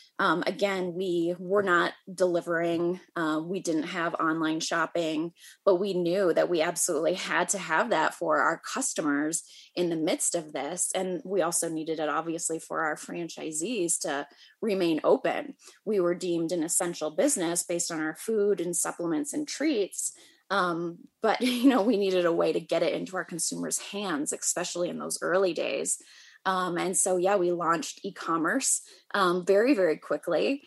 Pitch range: 165-200 Hz